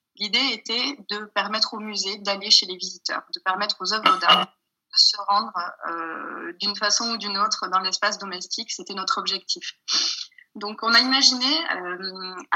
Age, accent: 20-39, French